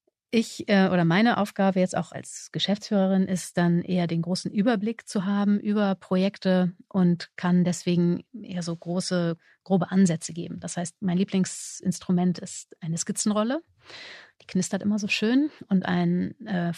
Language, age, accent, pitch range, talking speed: German, 30-49, German, 175-195 Hz, 155 wpm